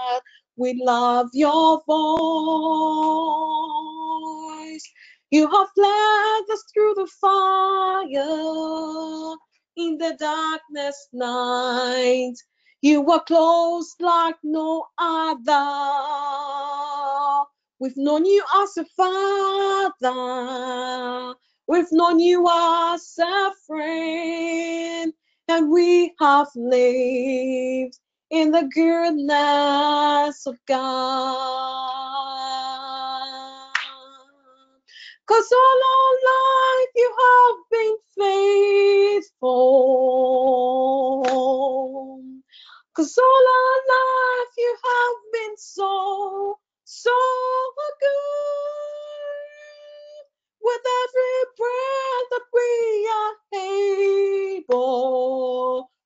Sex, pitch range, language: female, 265-390 Hz, English